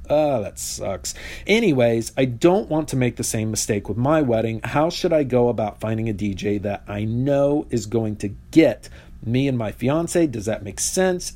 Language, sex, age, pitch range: English, male, 40-59, 100-140 Hz